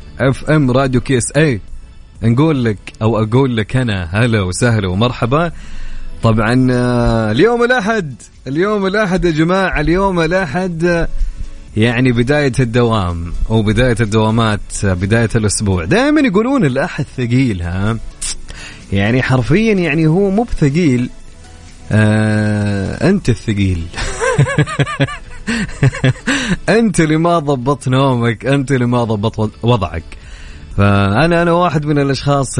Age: 30-49